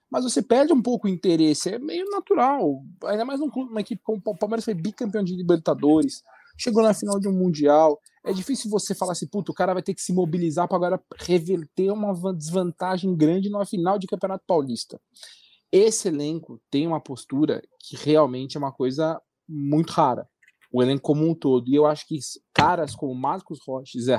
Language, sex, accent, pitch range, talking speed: Portuguese, male, Brazilian, 140-180 Hz, 200 wpm